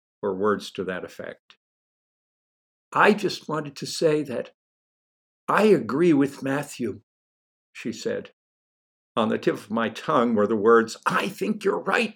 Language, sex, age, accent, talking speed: English, male, 60-79, American, 150 wpm